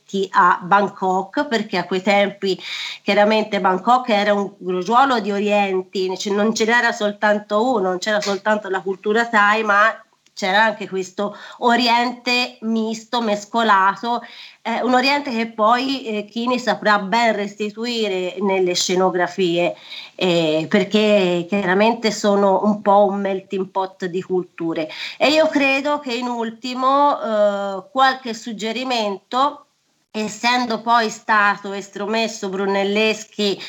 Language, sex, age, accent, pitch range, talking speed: Italian, female, 30-49, native, 195-225 Hz, 120 wpm